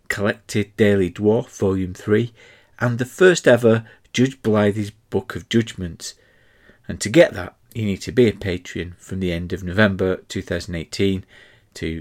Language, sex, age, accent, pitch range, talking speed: English, male, 40-59, British, 85-110 Hz, 155 wpm